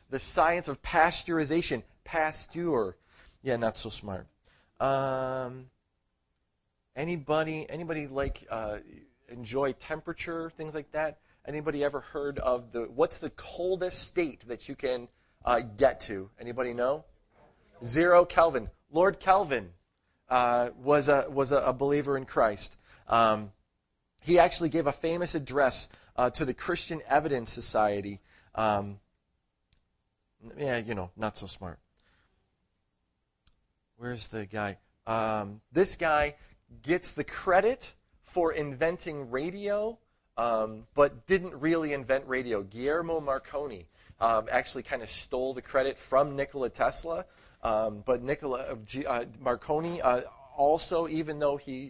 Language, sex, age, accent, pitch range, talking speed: English, male, 30-49, American, 110-150 Hz, 125 wpm